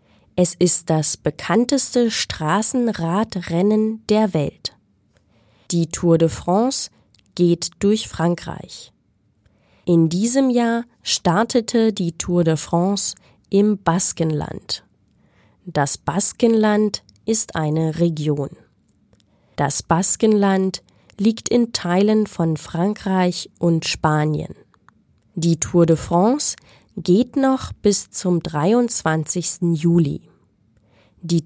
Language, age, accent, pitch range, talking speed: German, 20-39, German, 160-210 Hz, 95 wpm